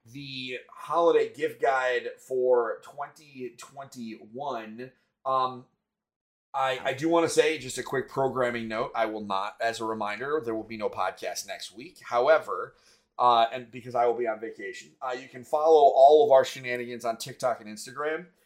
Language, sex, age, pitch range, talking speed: English, male, 30-49, 115-145 Hz, 170 wpm